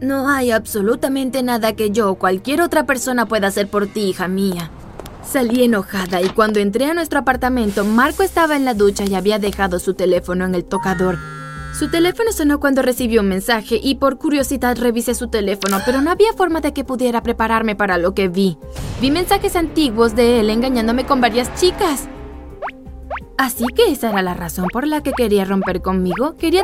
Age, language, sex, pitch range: 20-39, Spanish, female, 205-285 Hz